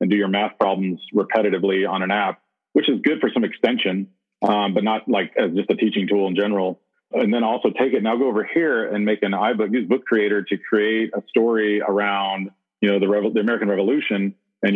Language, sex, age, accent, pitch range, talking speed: English, male, 40-59, American, 100-110 Hz, 225 wpm